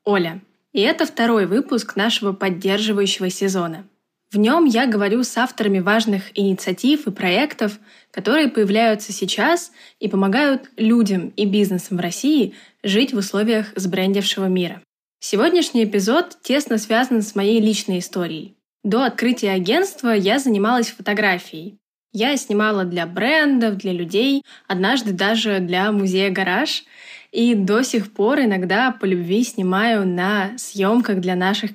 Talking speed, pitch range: 130 wpm, 195-230 Hz